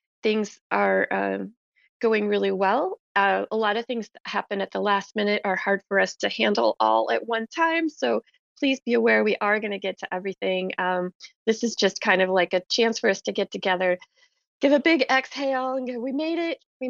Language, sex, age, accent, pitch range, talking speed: English, female, 20-39, American, 185-225 Hz, 220 wpm